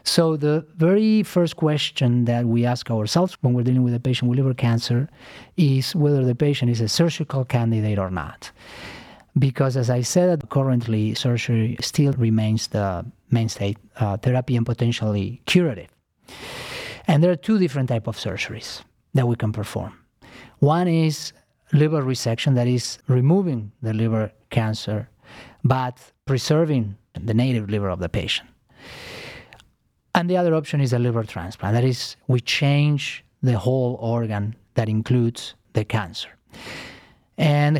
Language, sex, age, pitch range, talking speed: English, male, 40-59, 115-140 Hz, 145 wpm